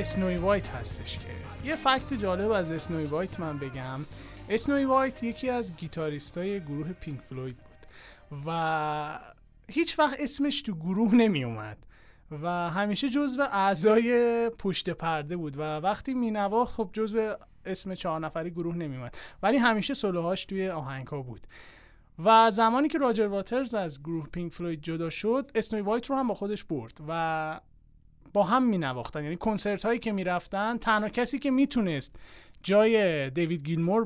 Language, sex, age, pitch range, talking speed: Persian, male, 30-49, 155-220 Hz, 155 wpm